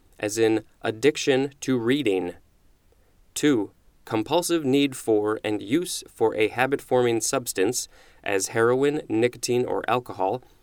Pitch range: 105-140 Hz